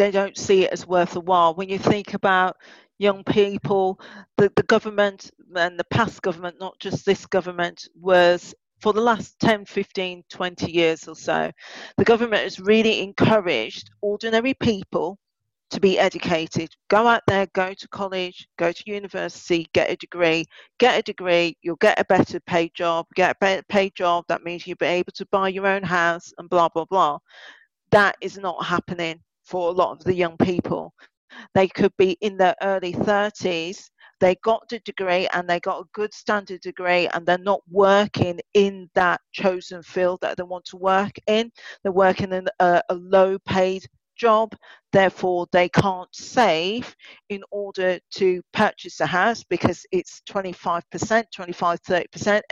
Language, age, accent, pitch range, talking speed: English, 40-59, British, 175-205 Hz, 175 wpm